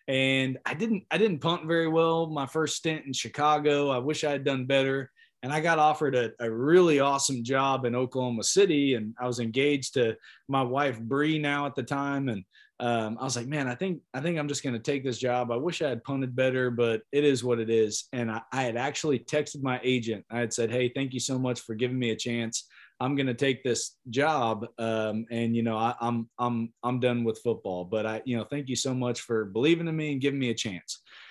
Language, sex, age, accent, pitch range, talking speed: English, male, 20-39, American, 120-155 Hz, 240 wpm